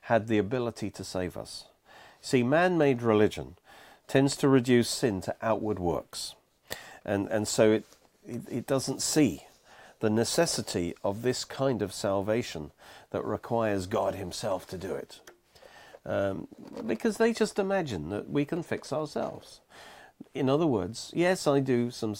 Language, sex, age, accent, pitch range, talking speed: English, male, 50-69, British, 100-140 Hz, 150 wpm